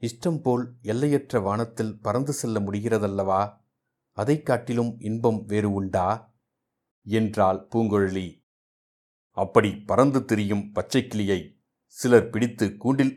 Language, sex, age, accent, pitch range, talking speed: Tamil, male, 60-79, native, 105-125 Hz, 100 wpm